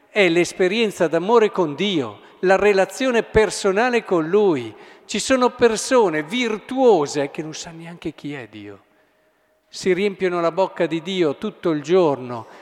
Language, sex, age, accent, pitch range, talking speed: Italian, male, 50-69, native, 135-195 Hz, 145 wpm